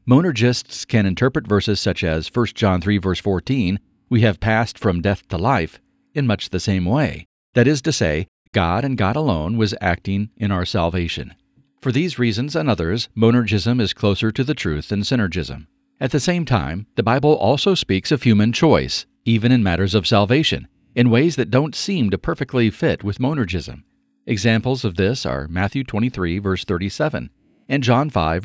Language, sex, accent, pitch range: English, male, American, 95-125 Hz